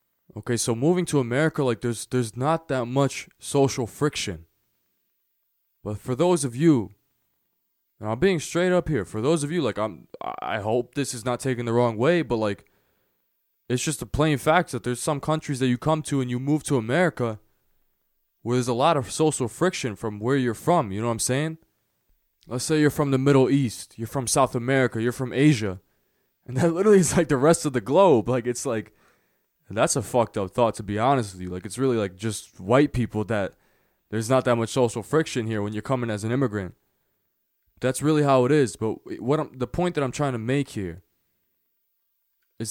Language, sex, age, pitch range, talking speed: English, male, 20-39, 110-145 Hz, 210 wpm